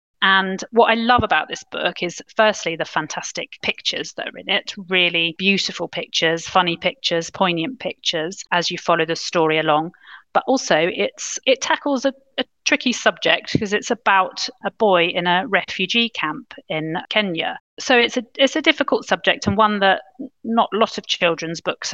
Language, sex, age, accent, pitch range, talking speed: English, female, 40-59, British, 170-215 Hz, 170 wpm